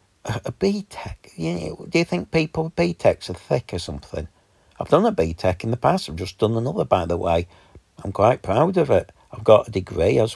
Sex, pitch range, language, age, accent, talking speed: male, 95-130 Hz, English, 50-69, British, 240 wpm